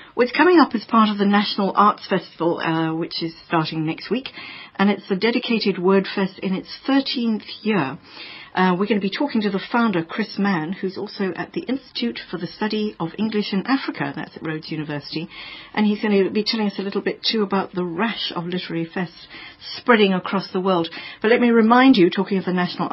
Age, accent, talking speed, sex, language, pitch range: 50-69, British, 215 wpm, female, English, 175-220 Hz